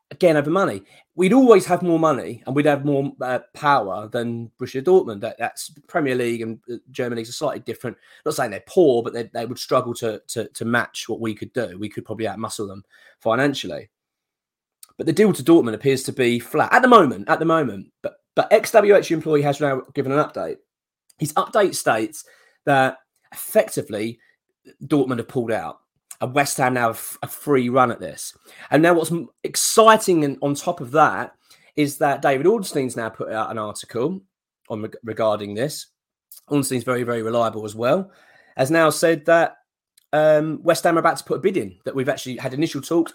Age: 30-49